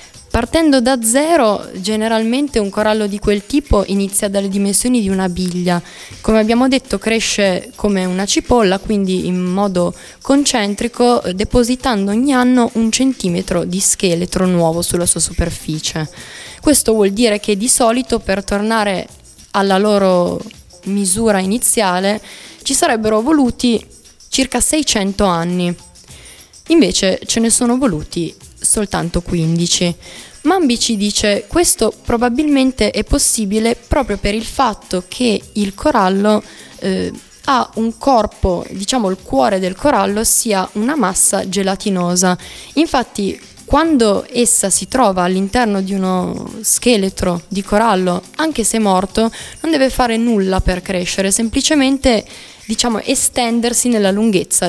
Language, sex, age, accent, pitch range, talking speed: Italian, female, 20-39, native, 190-240 Hz, 125 wpm